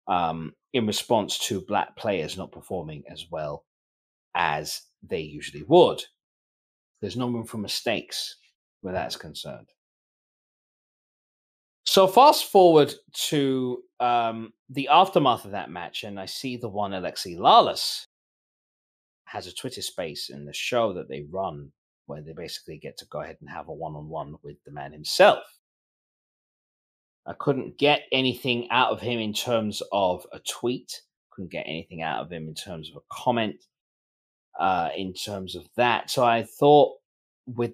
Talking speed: 155 wpm